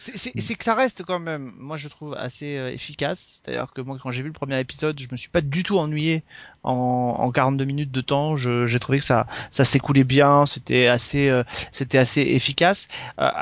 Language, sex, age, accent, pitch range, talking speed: French, male, 30-49, French, 135-170 Hz, 235 wpm